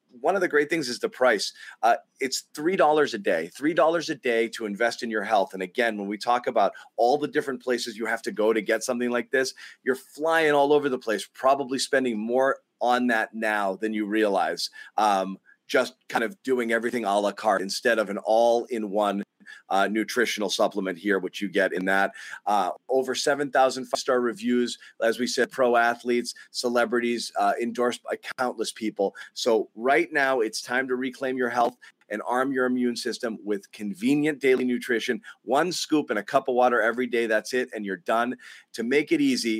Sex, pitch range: male, 110-130 Hz